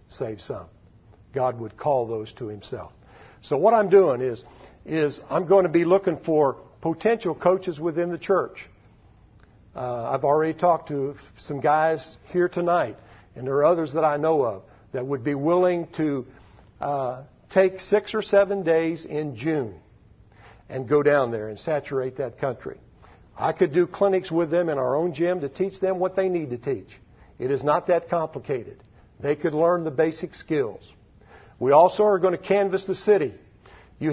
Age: 60-79